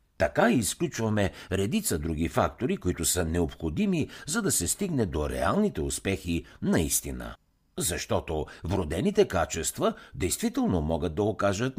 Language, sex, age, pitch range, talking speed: Bulgarian, male, 60-79, 85-135 Hz, 115 wpm